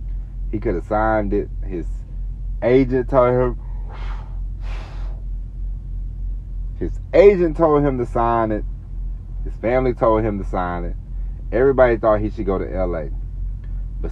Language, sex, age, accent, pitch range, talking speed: English, male, 40-59, American, 95-115 Hz, 130 wpm